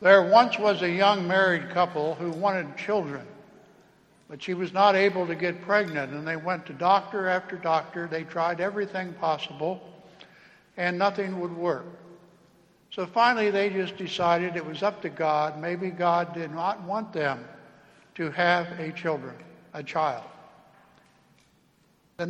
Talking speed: 150 wpm